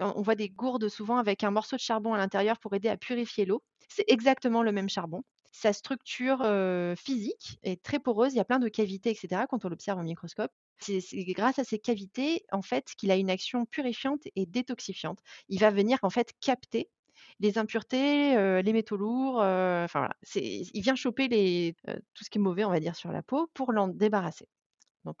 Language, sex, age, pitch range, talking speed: French, female, 30-49, 185-245 Hz, 215 wpm